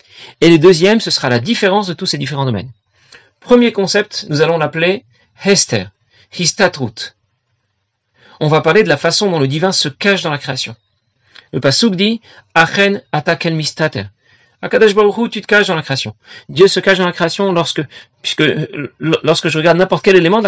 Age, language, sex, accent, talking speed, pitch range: 40-59, French, male, French, 180 wpm, 125-190 Hz